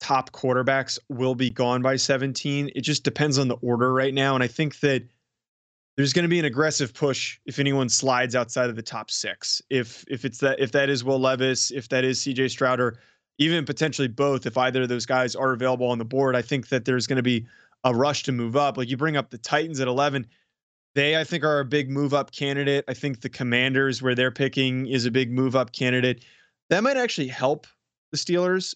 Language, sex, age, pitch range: English, male, 20-39, 125-145 Hz